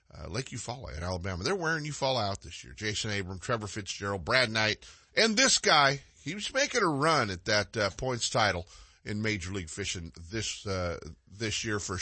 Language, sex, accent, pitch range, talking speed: English, male, American, 95-130 Hz, 195 wpm